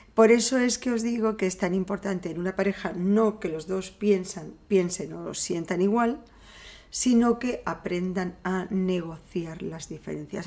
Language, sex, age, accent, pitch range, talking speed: Spanish, female, 40-59, Spanish, 185-230 Hz, 170 wpm